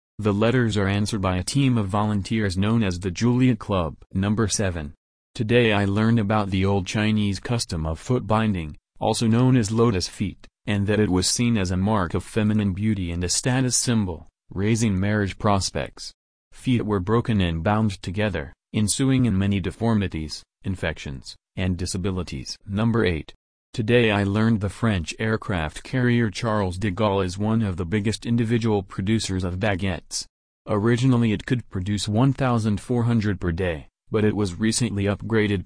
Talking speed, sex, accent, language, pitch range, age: 160 wpm, male, American, English, 95-115 Hz, 40-59